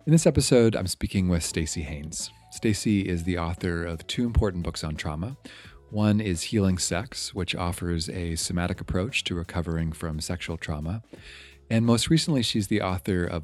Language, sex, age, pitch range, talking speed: English, male, 30-49, 85-100 Hz, 175 wpm